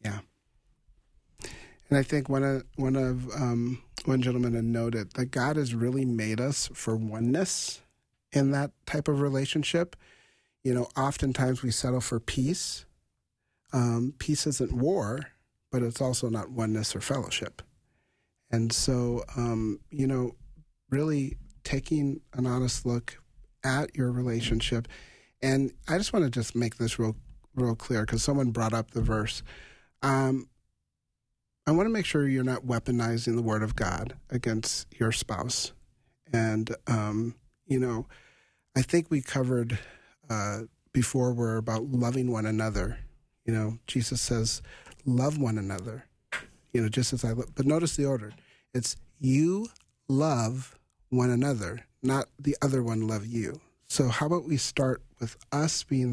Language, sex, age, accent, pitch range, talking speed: English, male, 40-59, American, 115-135 Hz, 150 wpm